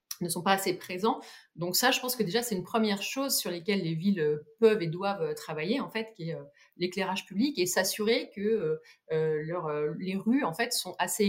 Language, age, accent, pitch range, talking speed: French, 30-49, French, 165-225 Hz, 220 wpm